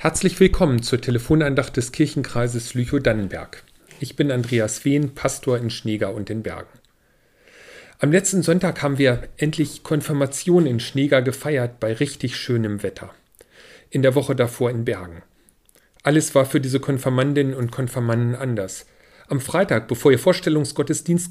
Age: 40-59